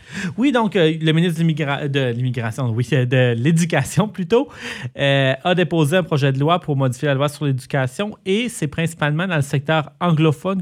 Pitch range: 125-160 Hz